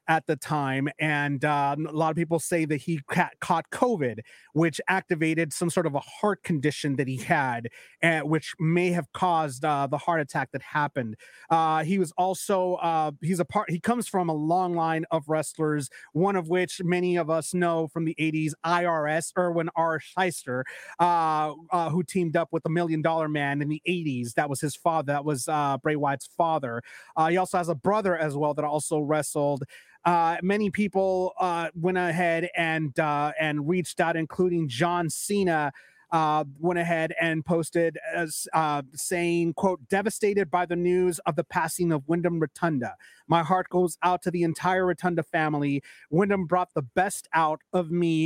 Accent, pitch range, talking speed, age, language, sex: American, 155-180 Hz, 185 wpm, 30-49, English, male